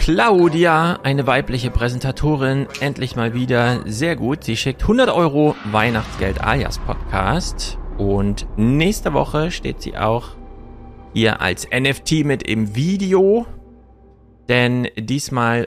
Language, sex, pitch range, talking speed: German, male, 110-140 Hz, 115 wpm